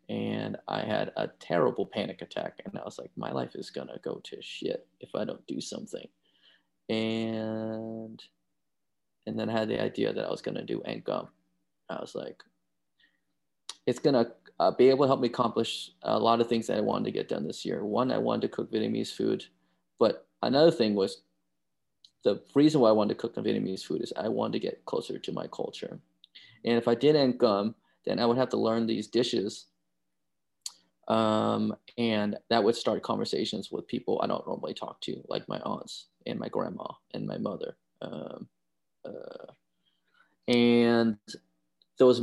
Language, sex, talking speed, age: English, male, 185 wpm, 20-39